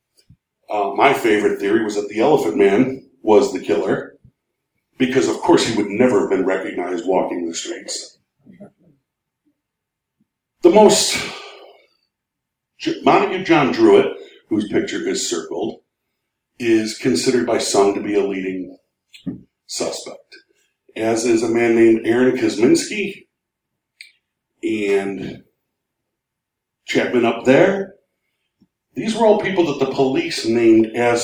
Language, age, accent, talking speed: English, 50-69, American, 120 wpm